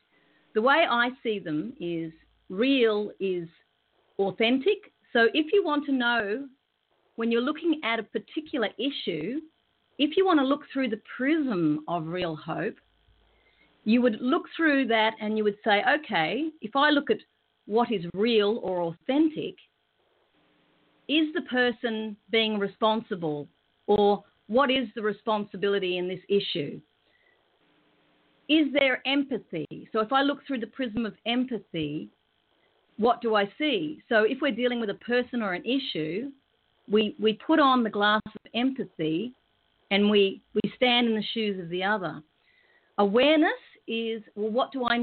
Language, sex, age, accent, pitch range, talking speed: English, female, 40-59, Australian, 200-260 Hz, 155 wpm